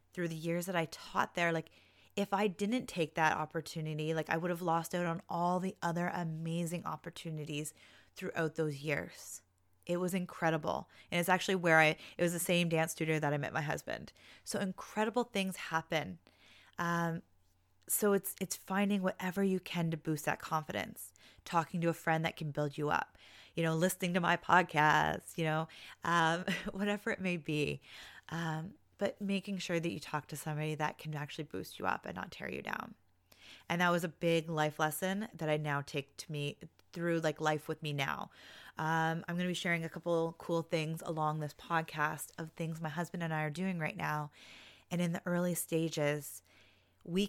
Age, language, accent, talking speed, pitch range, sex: 20-39, English, American, 195 wpm, 155-175 Hz, female